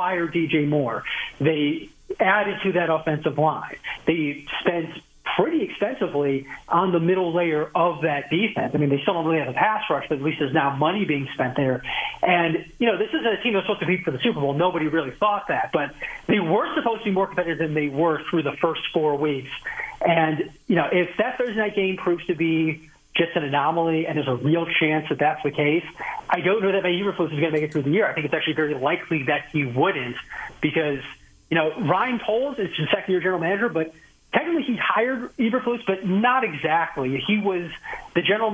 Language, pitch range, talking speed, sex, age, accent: English, 155-190 Hz, 220 wpm, male, 40-59, American